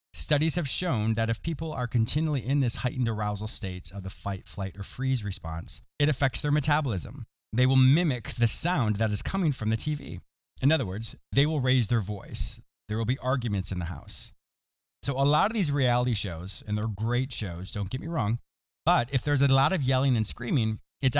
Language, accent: English, American